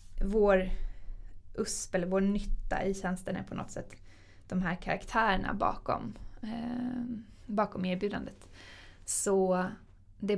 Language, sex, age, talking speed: English, female, 20-39, 115 wpm